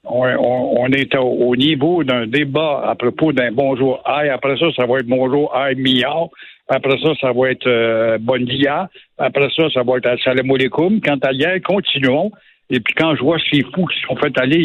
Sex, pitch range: male, 130-165 Hz